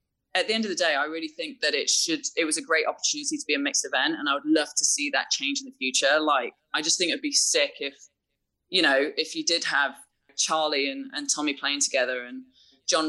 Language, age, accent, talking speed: English, 20-39, British, 250 wpm